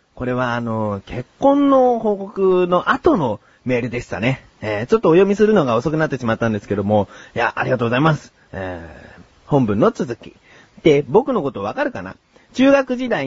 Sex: male